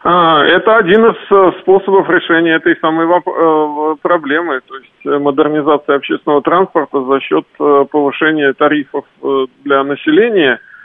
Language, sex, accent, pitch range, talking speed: Russian, male, native, 145-175 Hz, 105 wpm